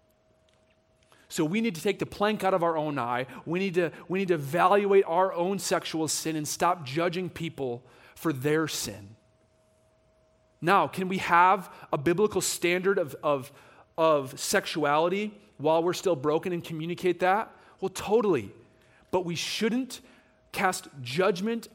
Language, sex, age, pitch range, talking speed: English, male, 30-49, 135-185 Hz, 145 wpm